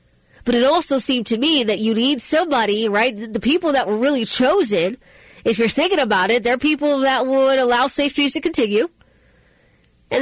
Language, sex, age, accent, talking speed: English, female, 30-49, American, 190 wpm